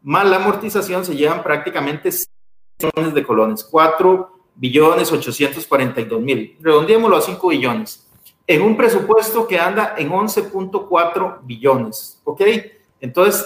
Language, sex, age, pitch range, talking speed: Spanish, male, 40-59, 150-220 Hz, 120 wpm